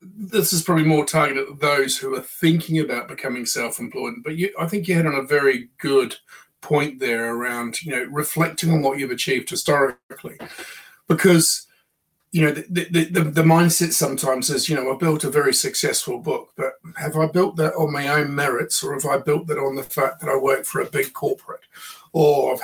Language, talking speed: English, 200 wpm